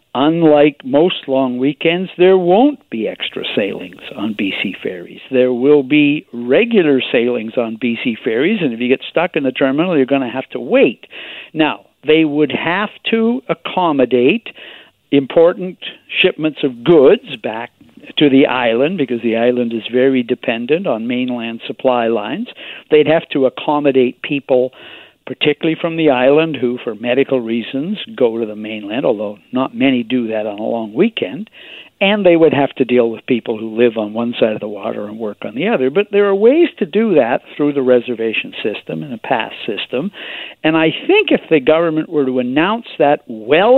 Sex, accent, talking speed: male, American, 180 wpm